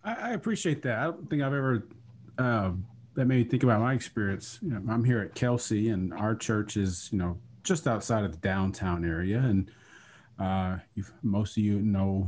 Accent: American